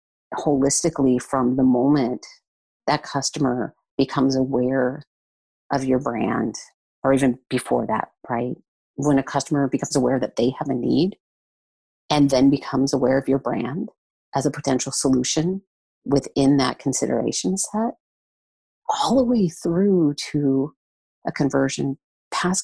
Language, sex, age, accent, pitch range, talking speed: English, female, 40-59, American, 135-165 Hz, 130 wpm